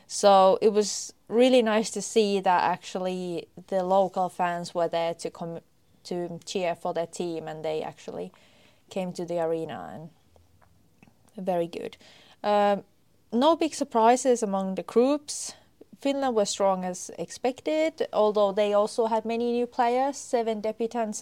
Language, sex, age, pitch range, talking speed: English, female, 20-39, 175-220 Hz, 145 wpm